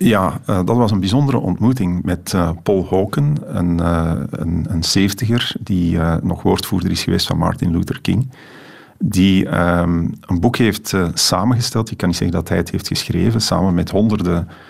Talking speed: 180 wpm